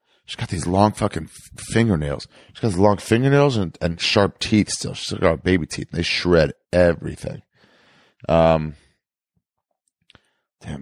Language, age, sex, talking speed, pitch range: English, 30-49, male, 140 wpm, 85-105 Hz